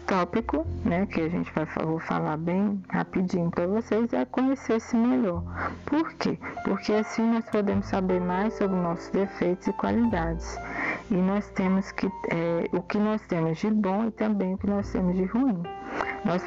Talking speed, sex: 175 wpm, female